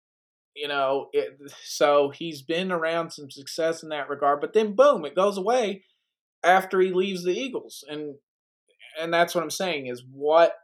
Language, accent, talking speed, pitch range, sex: English, American, 175 wpm, 135-180 Hz, male